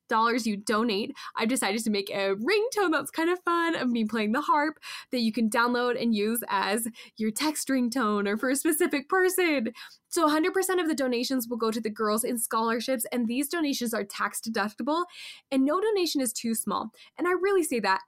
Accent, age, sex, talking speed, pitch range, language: American, 10-29, female, 205 wpm, 225-300 Hz, English